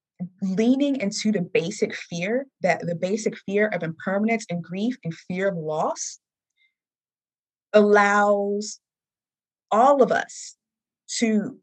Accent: American